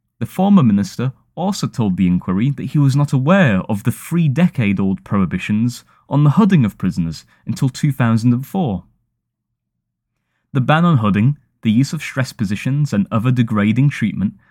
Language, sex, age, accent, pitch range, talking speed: English, male, 20-39, British, 100-140 Hz, 150 wpm